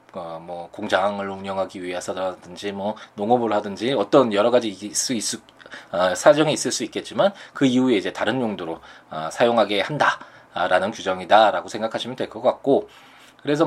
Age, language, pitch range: 20-39, Korean, 100-135 Hz